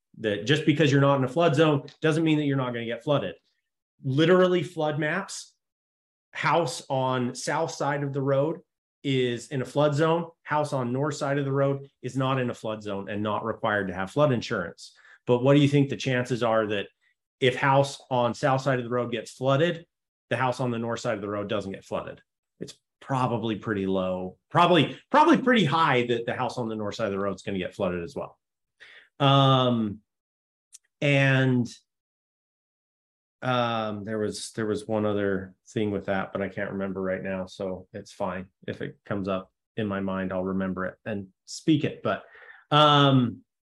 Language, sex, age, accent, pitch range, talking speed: English, male, 30-49, American, 105-145 Hz, 200 wpm